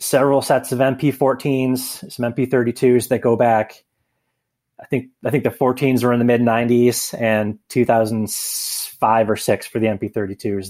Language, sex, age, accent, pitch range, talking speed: English, male, 30-49, American, 105-130 Hz, 170 wpm